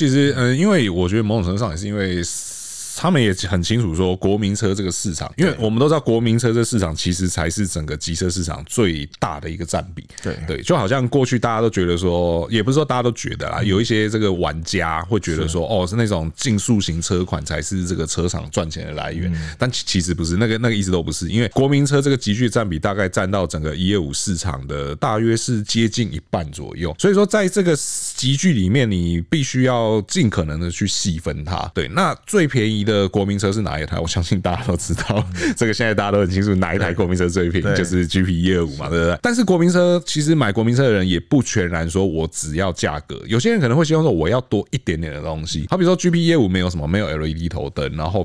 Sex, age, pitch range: male, 20-39, 85-120 Hz